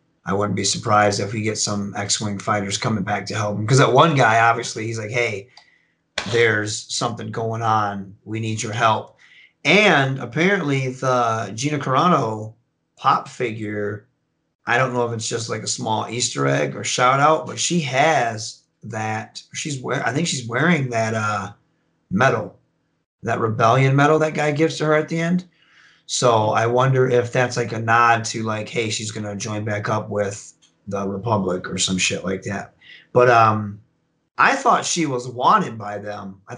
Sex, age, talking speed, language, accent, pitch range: male, 30-49, 180 wpm, English, American, 105-125 Hz